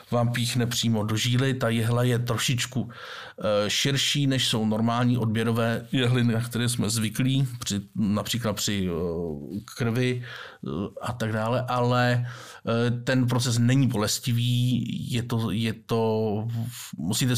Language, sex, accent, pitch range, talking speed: Czech, male, native, 110-125 Hz, 115 wpm